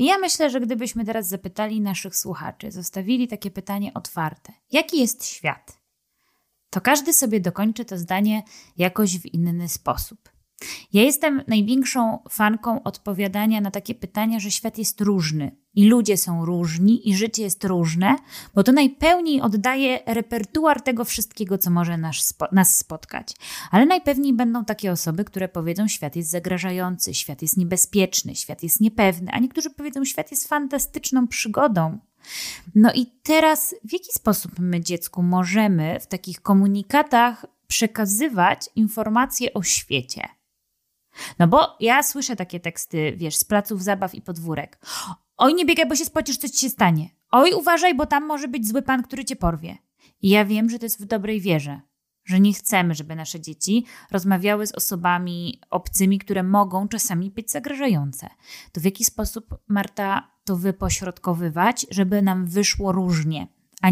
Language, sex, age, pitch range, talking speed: Polish, female, 20-39, 180-245 Hz, 155 wpm